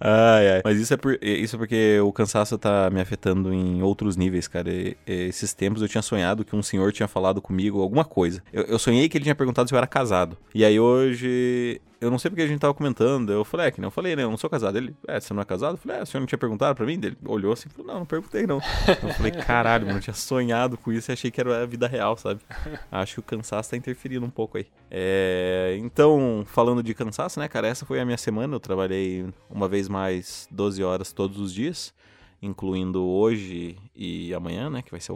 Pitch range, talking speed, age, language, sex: 95-125 Hz, 250 wpm, 20-39, Portuguese, male